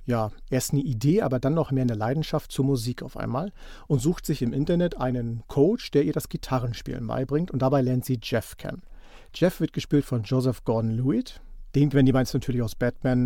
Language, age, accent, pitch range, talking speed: German, 50-69, German, 125-155 Hz, 205 wpm